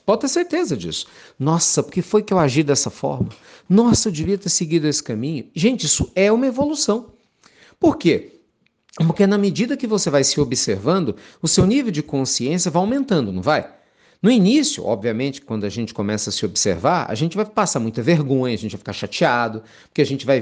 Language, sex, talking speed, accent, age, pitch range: Portuguese, male, 195 wpm, Brazilian, 50-69, 130-205 Hz